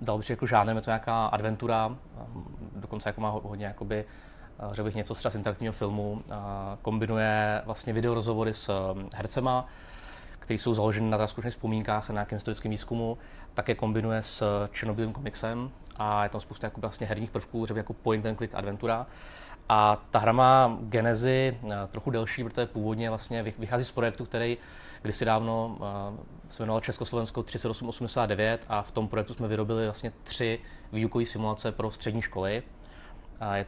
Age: 20-39